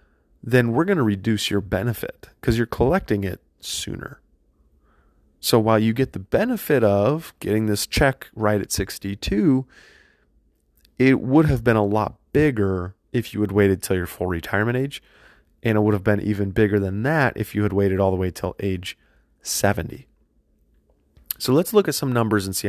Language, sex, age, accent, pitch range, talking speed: English, male, 30-49, American, 95-120 Hz, 180 wpm